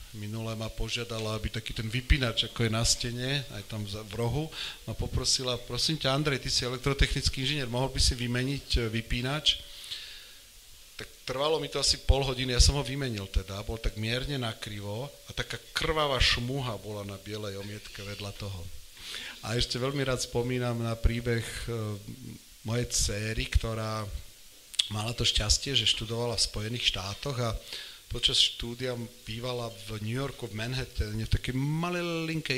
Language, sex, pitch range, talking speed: Slovak, male, 105-130 Hz, 155 wpm